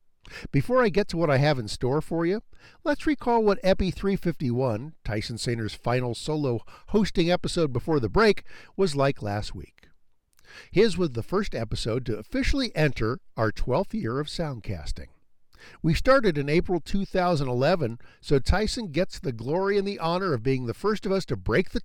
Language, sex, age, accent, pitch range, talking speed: English, male, 50-69, American, 115-190 Hz, 175 wpm